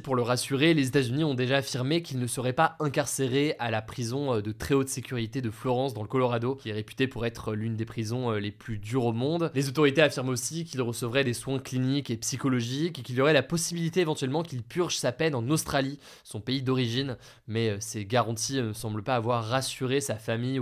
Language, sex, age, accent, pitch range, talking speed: French, male, 20-39, French, 120-140 Hz, 220 wpm